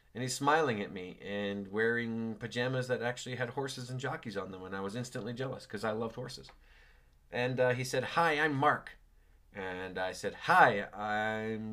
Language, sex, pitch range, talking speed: English, male, 95-125 Hz, 190 wpm